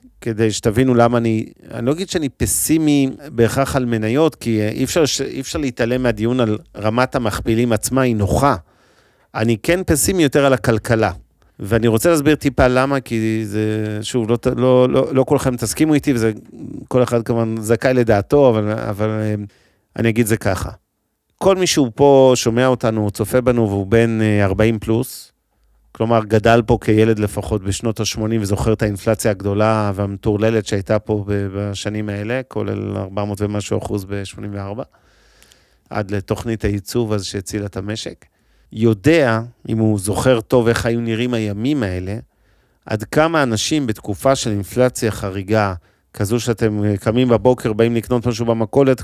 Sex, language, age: male, Hebrew, 40-59